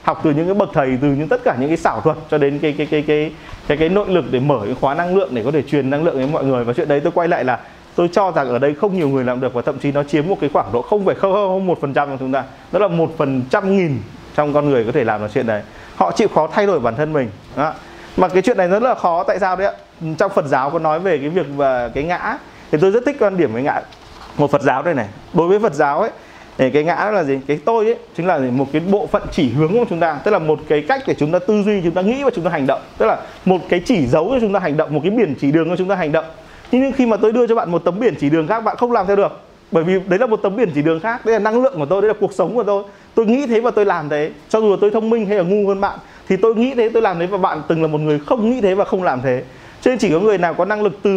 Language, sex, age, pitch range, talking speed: Vietnamese, male, 20-39, 145-205 Hz, 330 wpm